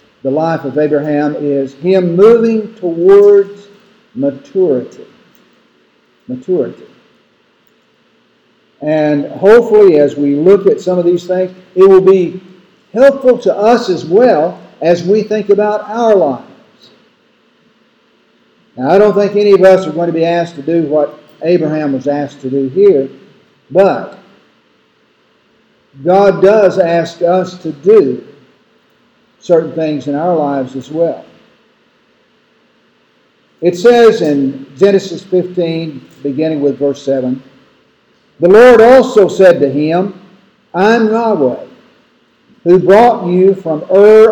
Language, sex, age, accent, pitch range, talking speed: English, male, 50-69, American, 155-220 Hz, 125 wpm